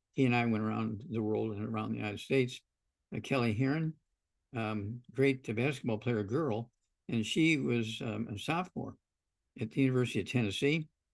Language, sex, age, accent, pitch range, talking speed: English, male, 60-79, American, 110-130 Hz, 165 wpm